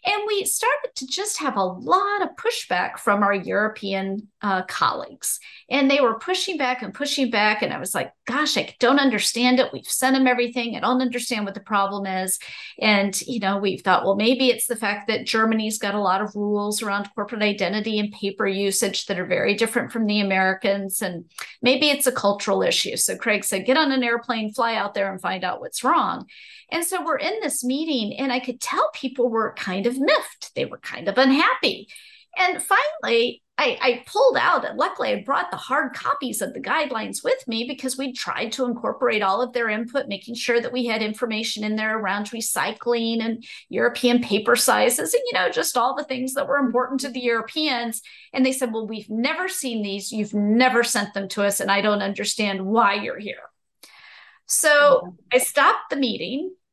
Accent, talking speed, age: American, 205 wpm, 40-59